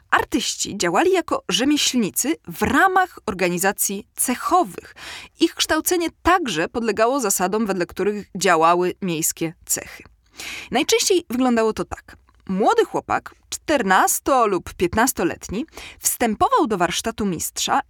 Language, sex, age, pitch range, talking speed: Polish, female, 20-39, 195-300 Hz, 105 wpm